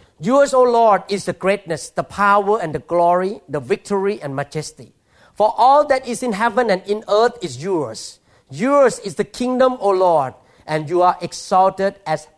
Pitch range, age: 155-220 Hz, 50-69